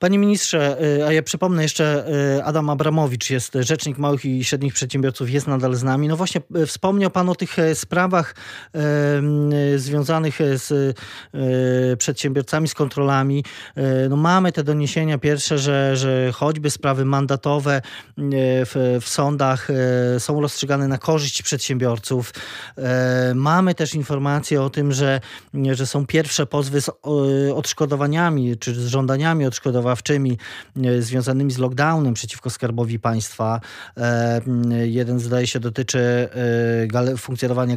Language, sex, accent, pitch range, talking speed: Polish, male, native, 125-150 Hz, 120 wpm